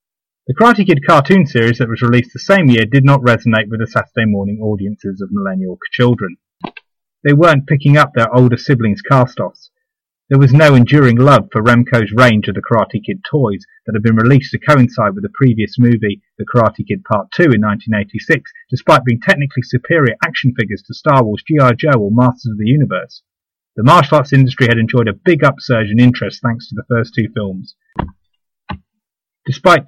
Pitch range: 110-140 Hz